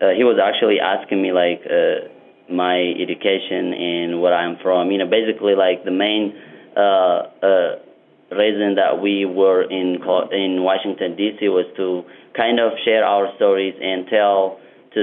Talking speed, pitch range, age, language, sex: 160 wpm, 90-110 Hz, 30-49, English, male